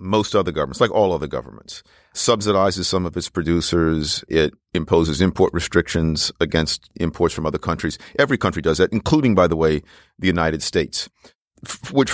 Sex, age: male, 50-69